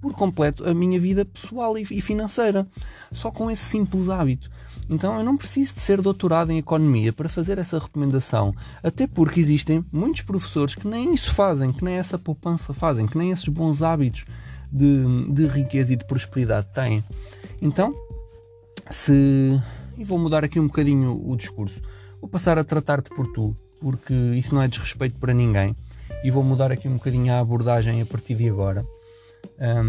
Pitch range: 110-155 Hz